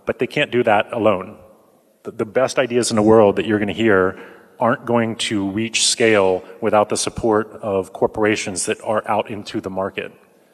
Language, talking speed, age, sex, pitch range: English, 180 wpm, 30-49, male, 95-115 Hz